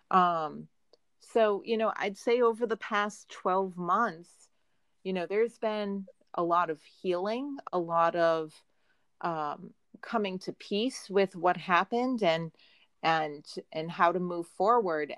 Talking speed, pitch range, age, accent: 140 wpm, 175-225 Hz, 30-49, American